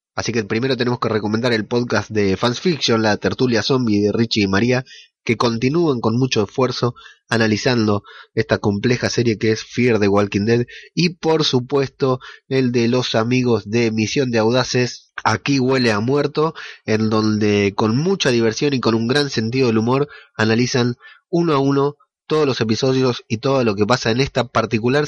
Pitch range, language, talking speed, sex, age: 105-135 Hz, Spanish, 180 wpm, male, 20-39